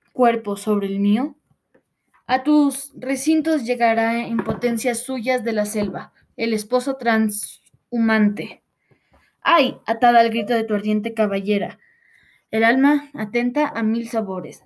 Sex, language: female, Spanish